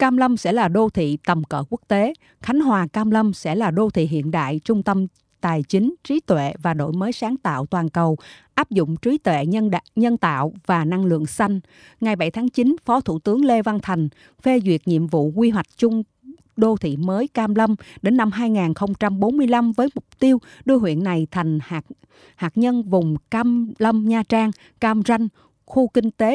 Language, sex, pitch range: Japanese, female, 170-235 Hz